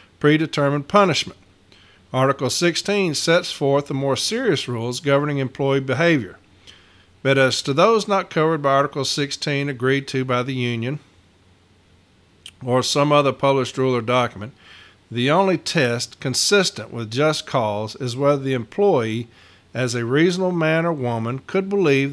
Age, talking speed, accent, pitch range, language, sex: 50-69, 145 wpm, American, 115-150 Hz, English, male